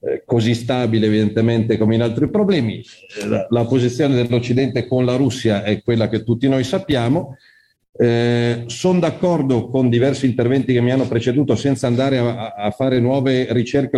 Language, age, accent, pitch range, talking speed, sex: Italian, 40-59, native, 115-140 Hz, 155 wpm, male